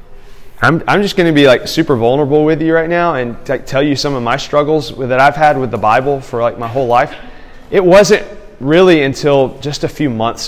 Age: 30-49